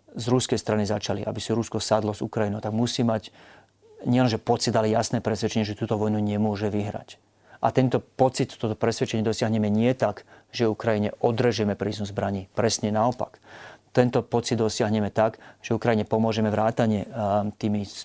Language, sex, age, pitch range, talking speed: Slovak, male, 30-49, 105-115 Hz, 155 wpm